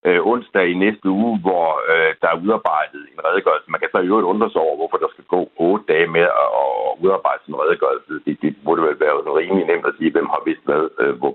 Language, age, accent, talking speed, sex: Danish, 60-79, native, 235 wpm, male